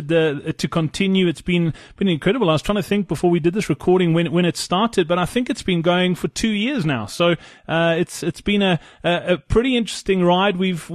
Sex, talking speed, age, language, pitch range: male, 225 wpm, 30-49, English, 155-180 Hz